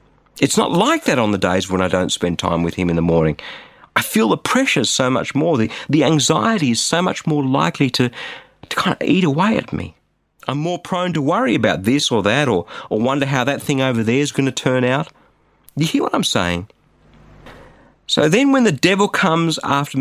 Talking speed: 220 wpm